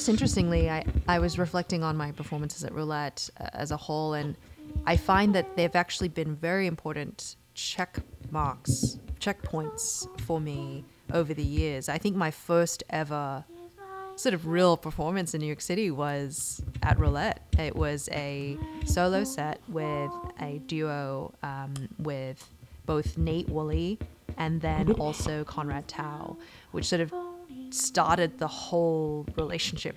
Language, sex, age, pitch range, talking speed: English, female, 20-39, 130-170 Hz, 145 wpm